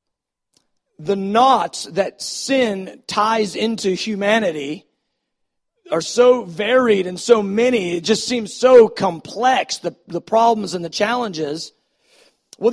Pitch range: 205-270 Hz